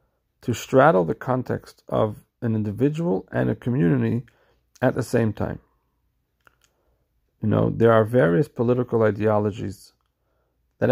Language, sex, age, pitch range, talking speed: English, male, 40-59, 110-140 Hz, 120 wpm